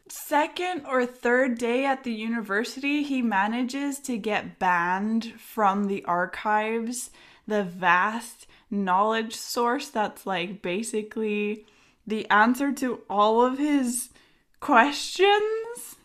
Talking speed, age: 110 wpm, 10-29